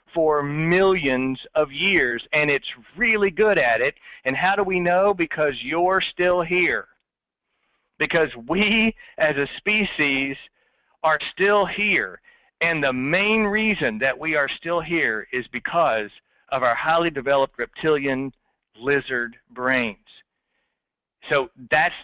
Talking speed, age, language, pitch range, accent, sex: 130 wpm, 50-69, English, 135-185 Hz, American, male